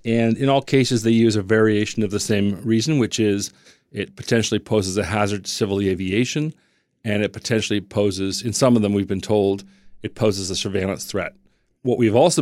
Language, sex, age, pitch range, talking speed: English, male, 40-59, 100-120 Hz, 200 wpm